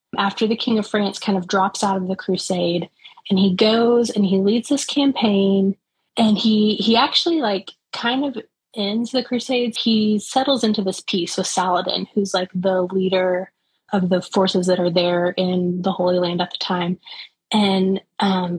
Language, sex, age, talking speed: English, female, 20-39, 180 wpm